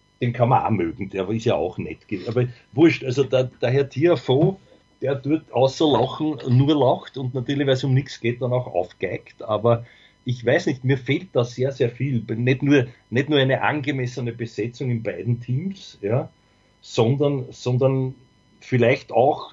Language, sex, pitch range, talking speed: English, male, 115-135 Hz, 170 wpm